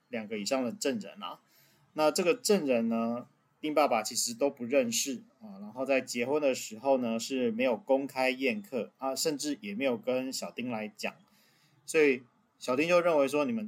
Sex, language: male, Chinese